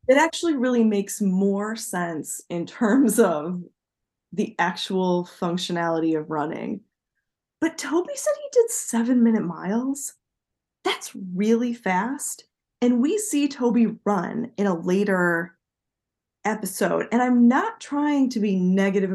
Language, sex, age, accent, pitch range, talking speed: English, female, 20-39, American, 185-265 Hz, 130 wpm